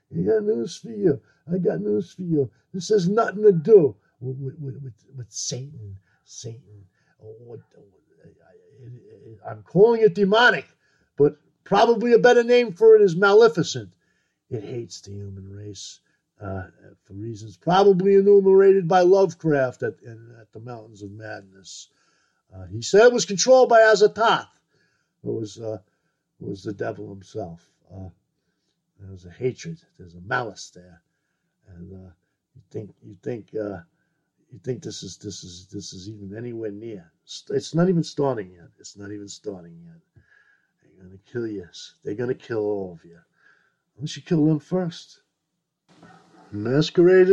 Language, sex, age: English, male, 50-69